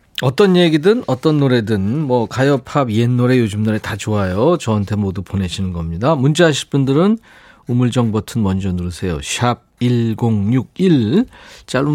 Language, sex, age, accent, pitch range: Korean, male, 40-59, native, 95-140 Hz